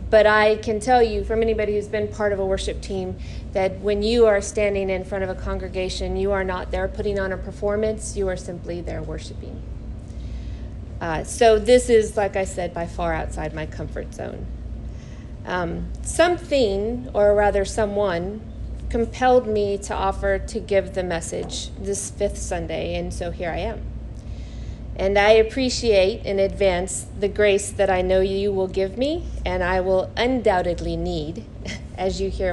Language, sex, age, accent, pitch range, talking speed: English, female, 40-59, American, 185-220 Hz, 170 wpm